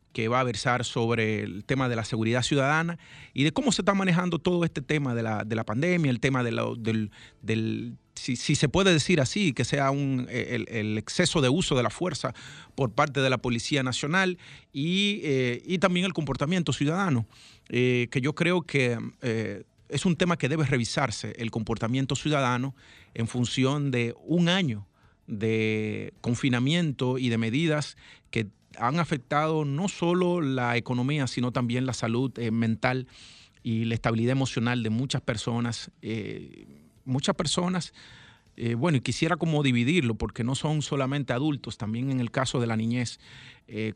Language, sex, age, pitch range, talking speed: Spanish, male, 40-59, 115-145 Hz, 170 wpm